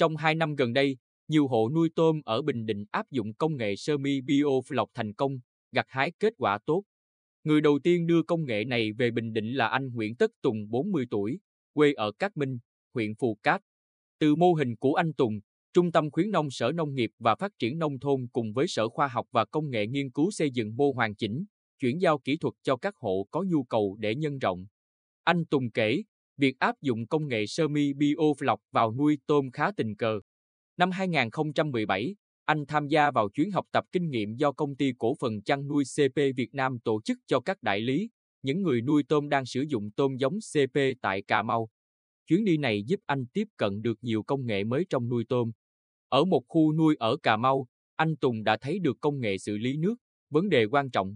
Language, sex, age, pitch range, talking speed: Vietnamese, male, 20-39, 115-155 Hz, 225 wpm